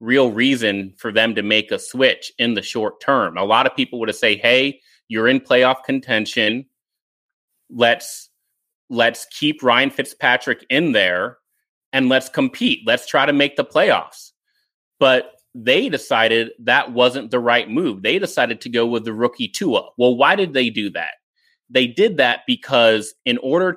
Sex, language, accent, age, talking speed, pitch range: male, English, American, 30-49, 170 wpm, 115-155 Hz